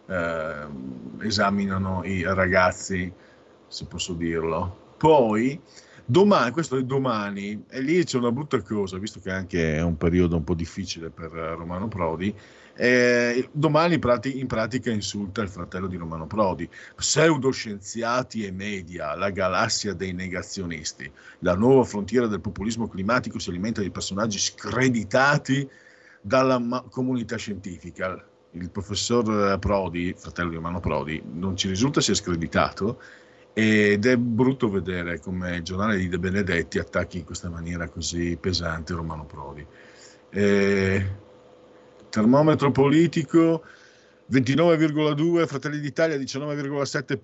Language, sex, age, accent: Italian, male, 50-69, native